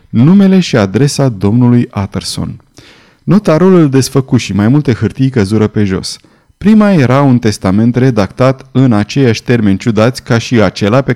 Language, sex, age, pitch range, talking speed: Romanian, male, 30-49, 110-150 Hz, 145 wpm